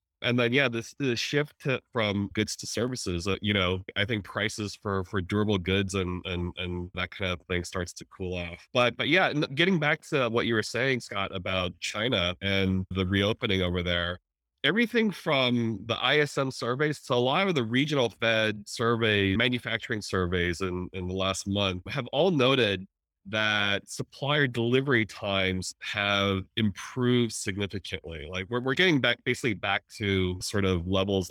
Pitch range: 90-120 Hz